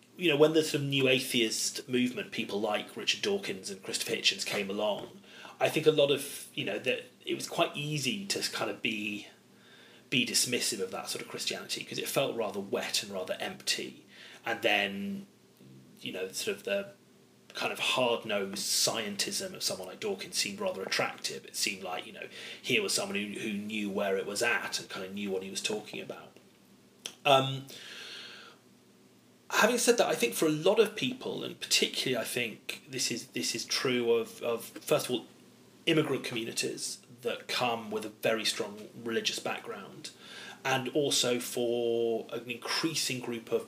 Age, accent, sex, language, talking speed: 30-49, British, male, English, 185 wpm